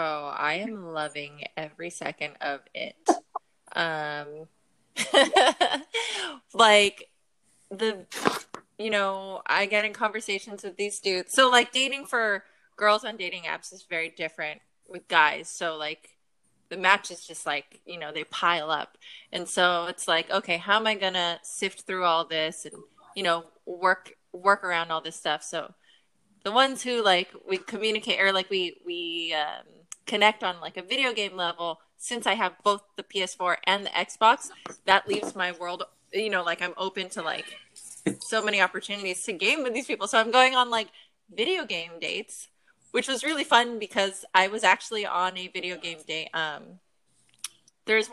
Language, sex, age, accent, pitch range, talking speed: English, female, 20-39, American, 170-220 Hz, 170 wpm